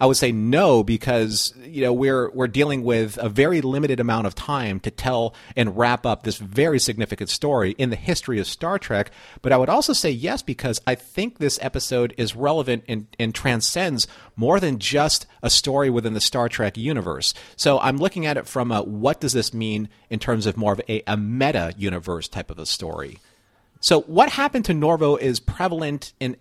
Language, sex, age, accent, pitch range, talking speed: English, male, 40-59, American, 110-140 Hz, 205 wpm